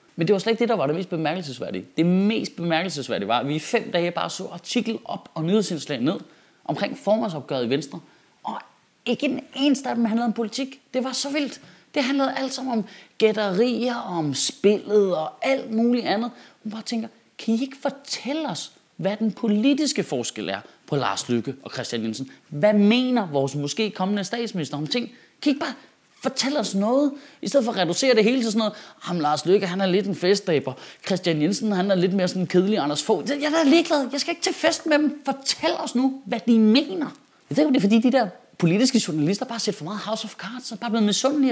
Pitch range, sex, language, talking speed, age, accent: 165-255 Hz, male, Danish, 225 wpm, 30-49, native